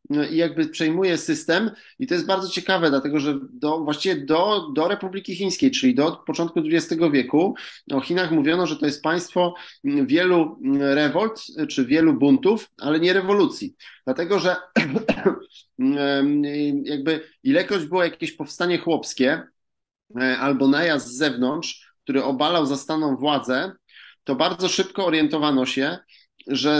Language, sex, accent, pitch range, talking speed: Polish, male, native, 135-180 Hz, 130 wpm